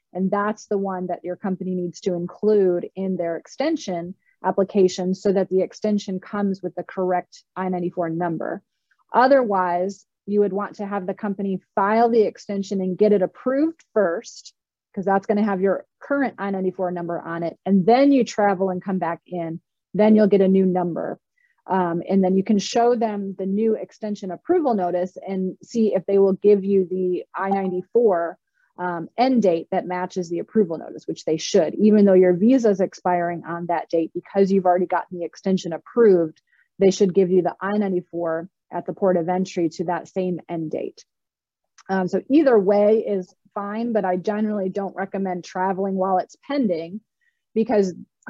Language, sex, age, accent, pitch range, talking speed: English, female, 30-49, American, 180-210 Hz, 180 wpm